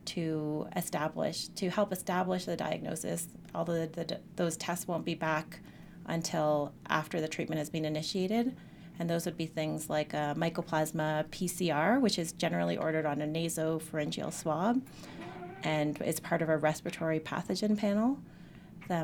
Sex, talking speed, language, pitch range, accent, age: female, 150 wpm, English, 160-190 Hz, American, 30-49